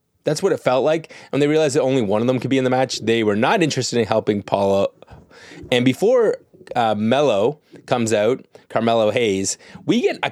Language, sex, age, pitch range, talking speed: English, male, 30-49, 105-140 Hz, 210 wpm